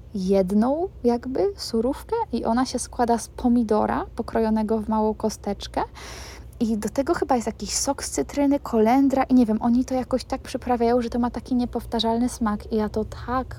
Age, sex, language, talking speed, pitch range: 20-39, female, Polish, 180 wpm, 215-245 Hz